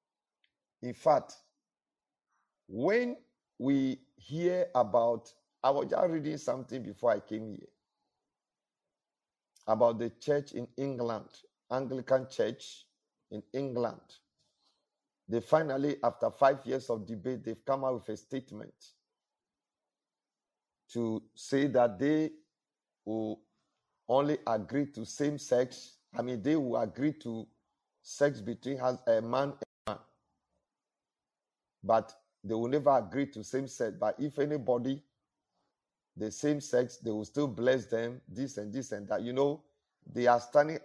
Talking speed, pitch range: 130 wpm, 115-140 Hz